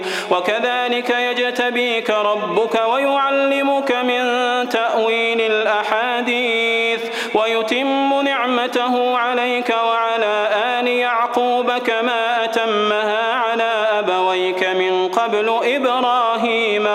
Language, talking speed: Arabic, 70 wpm